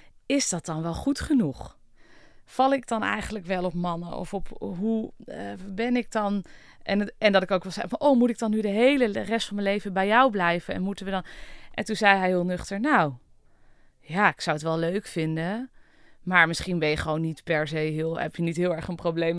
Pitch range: 150-205 Hz